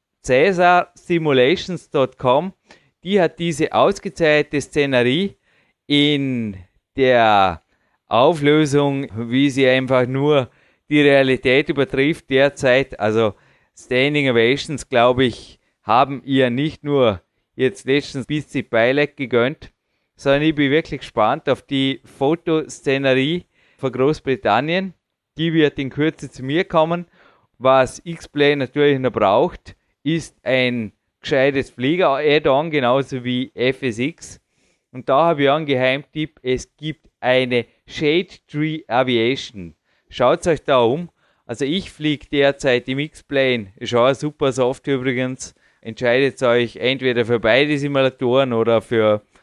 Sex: male